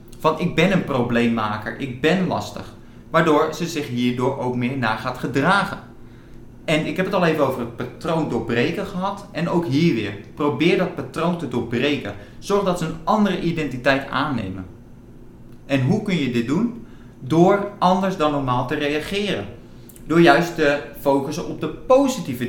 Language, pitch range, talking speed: Dutch, 120-180 Hz, 170 wpm